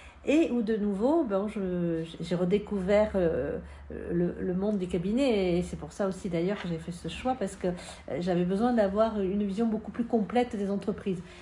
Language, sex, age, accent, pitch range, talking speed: French, female, 50-69, French, 180-230 Hz, 180 wpm